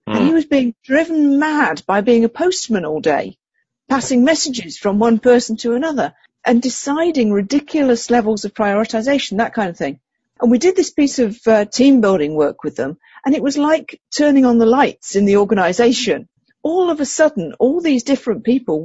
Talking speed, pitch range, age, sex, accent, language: 190 wpm, 200-265 Hz, 50-69, female, British, English